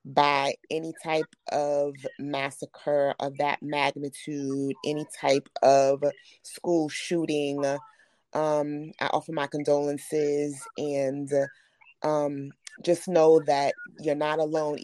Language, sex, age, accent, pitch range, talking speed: English, female, 30-49, American, 145-170 Hz, 105 wpm